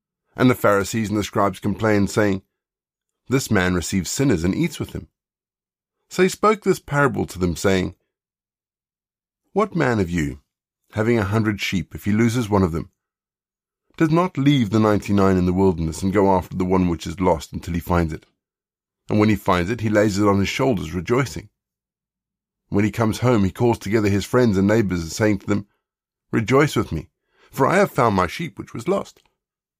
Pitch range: 95-120 Hz